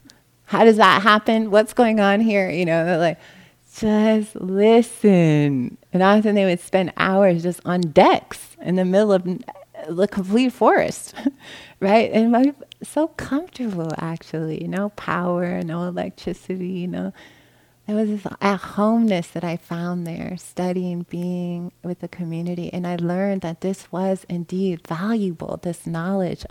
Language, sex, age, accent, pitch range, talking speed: English, female, 30-49, American, 165-205 Hz, 150 wpm